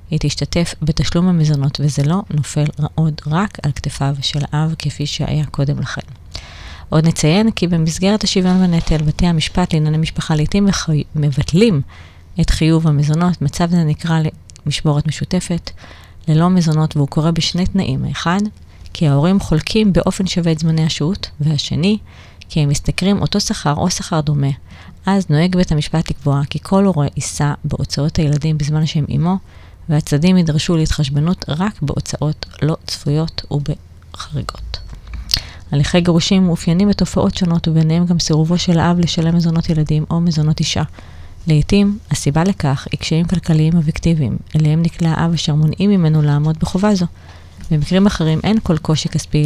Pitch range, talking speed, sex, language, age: 145-170 Hz, 145 wpm, female, Hebrew, 30-49